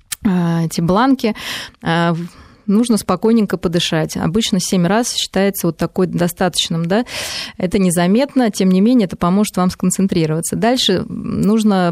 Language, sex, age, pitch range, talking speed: Russian, female, 20-39, 180-220 Hz, 120 wpm